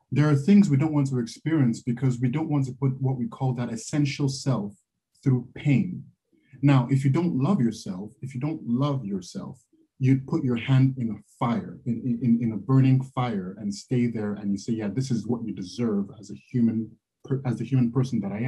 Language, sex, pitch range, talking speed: English, male, 115-135 Hz, 220 wpm